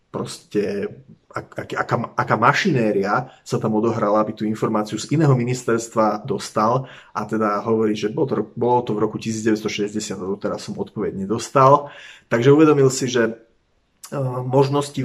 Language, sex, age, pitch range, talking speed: Slovak, male, 30-49, 105-120 Hz, 150 wpm